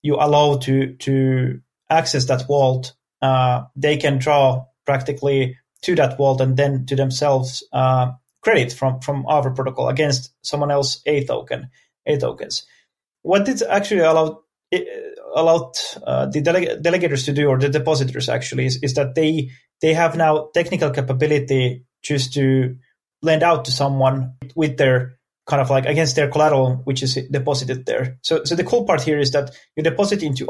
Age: 30-49